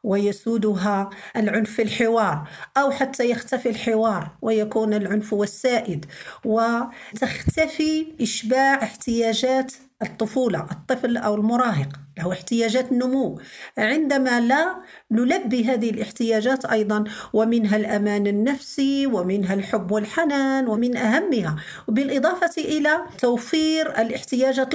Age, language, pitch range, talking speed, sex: 50-69, Arabic, 220-270 Hz, 95 wpm, female